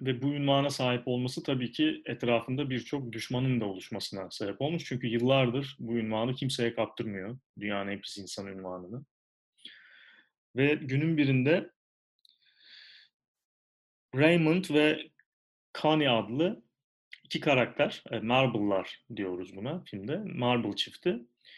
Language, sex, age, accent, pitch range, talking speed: Turkish, male, 30-49, native, 105-140 Hz, 110 wpm